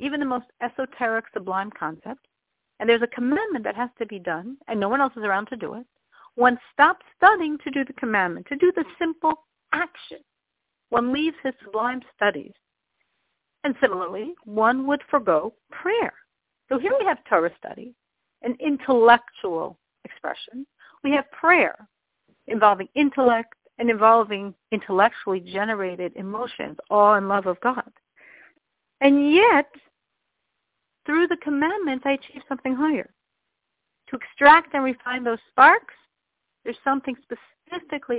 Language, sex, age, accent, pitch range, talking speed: English, female, 50-69, American, 220-285 Hz, 140 wpm